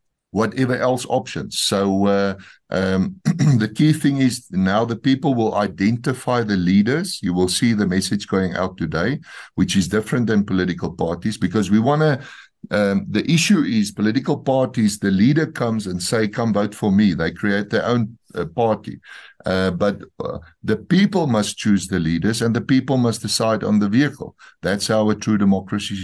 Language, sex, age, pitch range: English, male, 60-79, 95-120 Hz